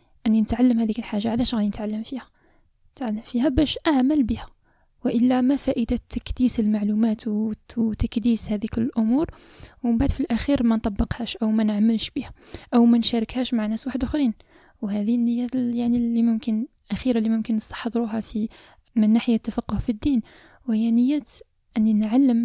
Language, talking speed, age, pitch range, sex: Arabic, 155 wpm, 10-29, 225-255 Hz, female